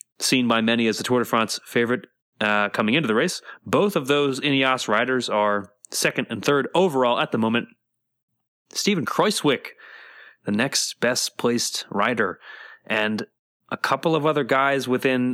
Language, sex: English, male